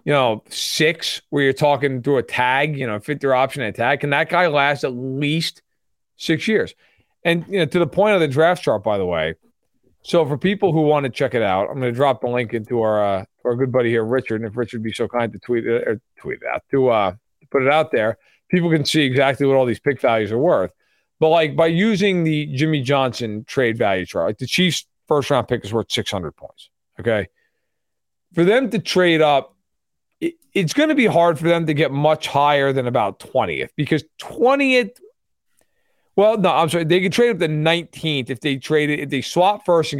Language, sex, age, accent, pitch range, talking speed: English, male, 40-59, American, 130-180 Hz, 225 wpm